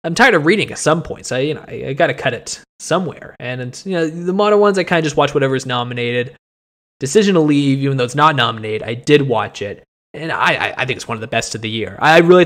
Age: 20-39